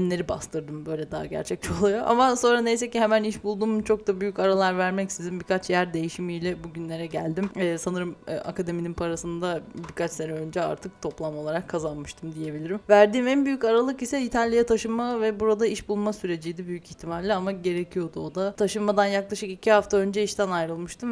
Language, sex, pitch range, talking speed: Turkish, female, 170-210 Hz, 175 wpm